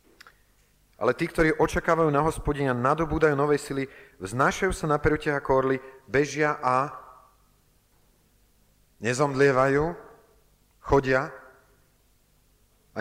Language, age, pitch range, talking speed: Slovak, 40-59, 105-145 Hz, 90 wpm